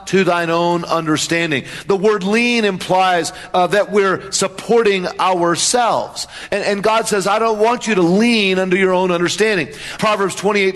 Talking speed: 160 wpm